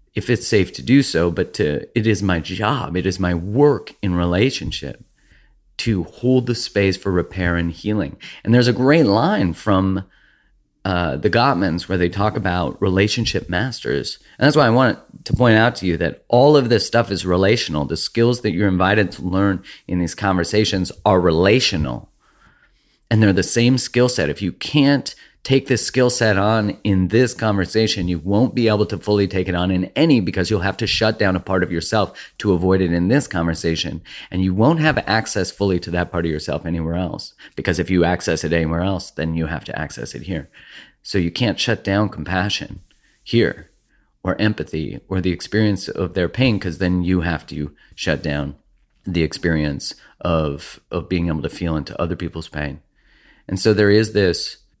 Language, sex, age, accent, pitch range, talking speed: English, male, 30-49, American, 85-110 Hz, 195 wpm